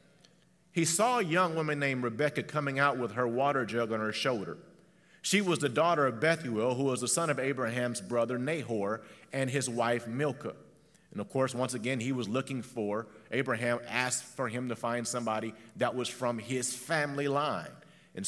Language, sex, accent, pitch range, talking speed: English, male, American, 120-160 Hz, 185 wpm